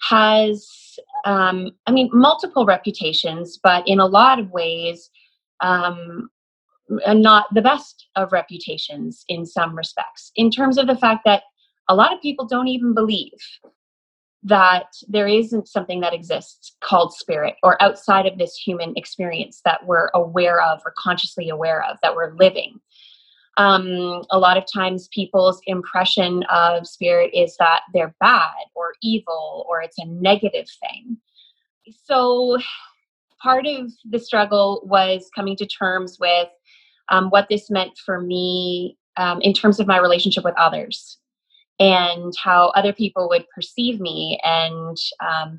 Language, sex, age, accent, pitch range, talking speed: English, female, 20-39, American, 180-235 Hz, 145 wpm